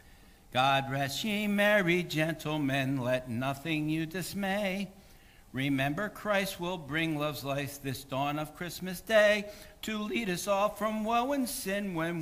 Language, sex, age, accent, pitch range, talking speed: English, male, 60-79, American, 150-220 Hz, 140 wpm